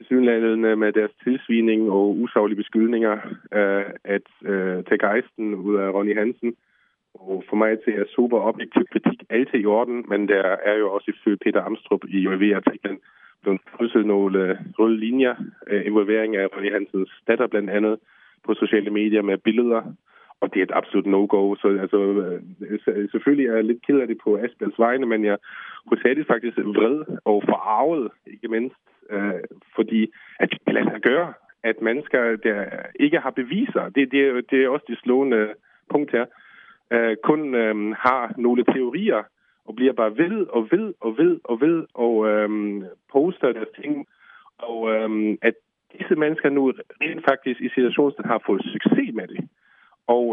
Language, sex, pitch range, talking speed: Danish, male, 105-130 Hz, 165 wpm